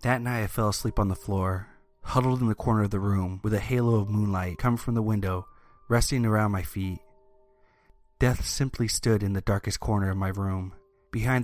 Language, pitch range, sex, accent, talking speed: English, 95-125 Hz, male, American, 205 wpm